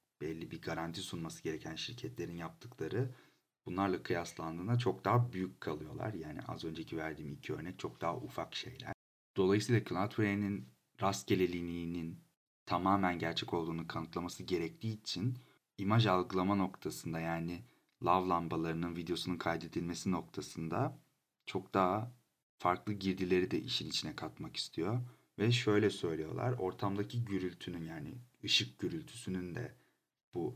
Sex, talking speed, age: male, 120 wpm, 40-59